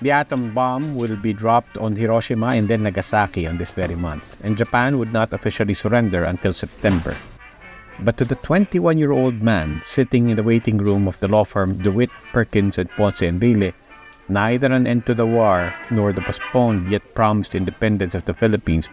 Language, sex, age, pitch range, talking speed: Filipino, male, 50-69, 90-115 Hz, 185 wpm